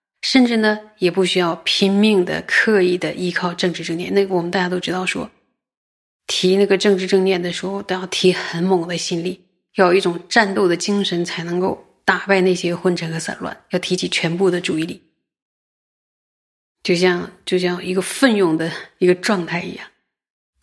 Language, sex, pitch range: Chinese, female, 175-205 Hz